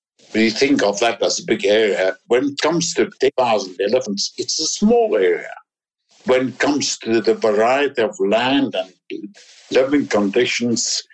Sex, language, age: male, English, 60-79